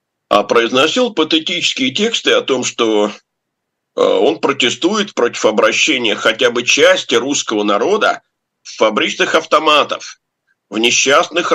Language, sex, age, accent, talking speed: Russian, male, 50-69, native, 110 wpm